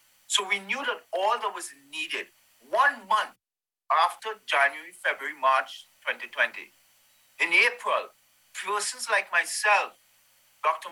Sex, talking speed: male, 115 wpm